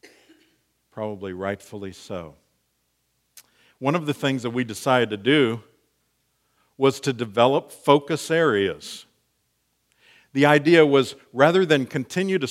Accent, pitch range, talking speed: American, 95-140 Hz, 115 wpm